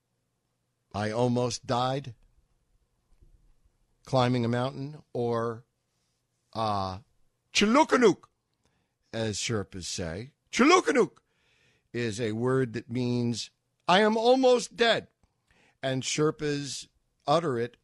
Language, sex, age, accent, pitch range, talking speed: English, male, 50-69, American, 100-135 Hz, 85 wpm